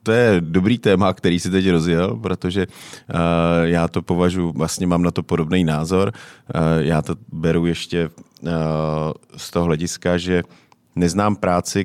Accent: native